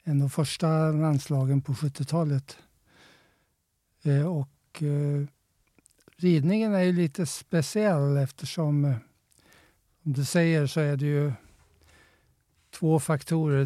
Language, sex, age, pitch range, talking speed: Swedish, male, 60-79, 140-170 Hz, 115 wpm